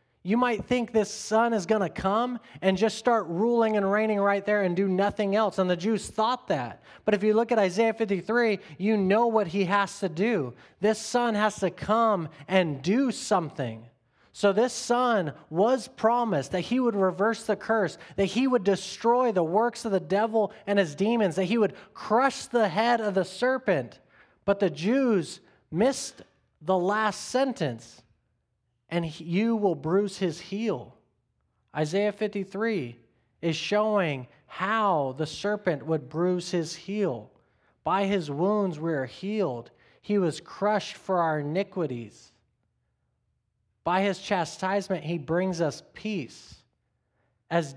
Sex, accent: male, American